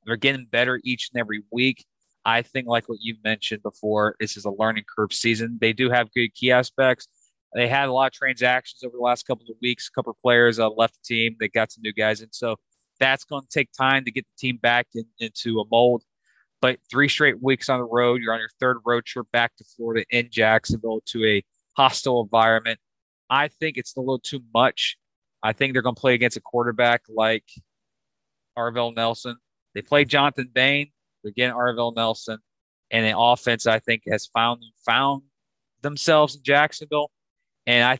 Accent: American